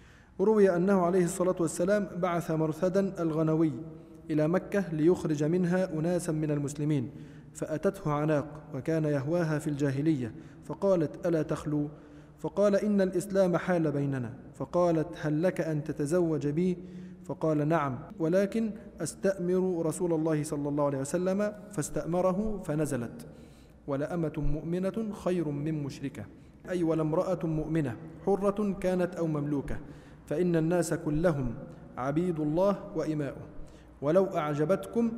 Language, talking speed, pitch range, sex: Arabic, 115 wpm, 150-180 Hz, male